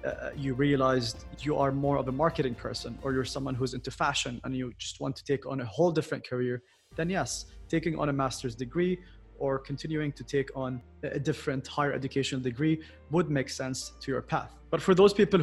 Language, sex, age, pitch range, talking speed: English, male, 20-39, 130-155 Hz, 210 wpm